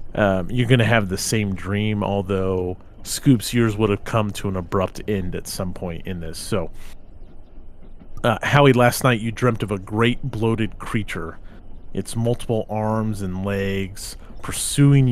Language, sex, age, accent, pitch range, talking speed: English, male, 30-49, American, 90-115 Hz, 165 wpm